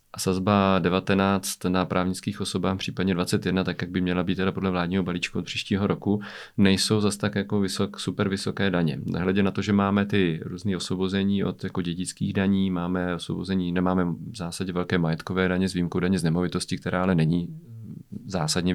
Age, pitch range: 40-59, 95-105 Hz